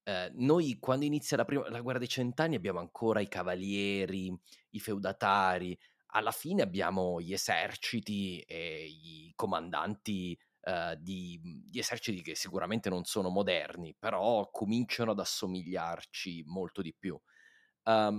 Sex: male